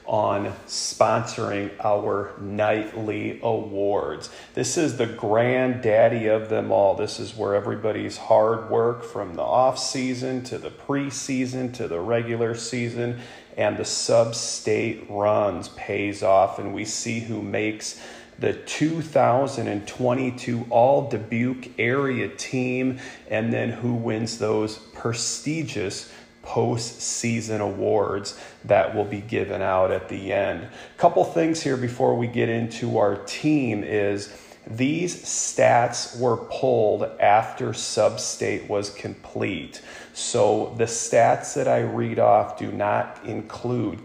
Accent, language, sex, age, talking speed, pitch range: American, English, male, 40-59, 120 wpm, 105-125 Hz